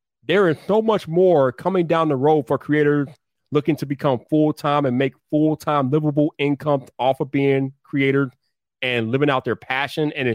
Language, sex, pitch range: English, male, 130-175 Hz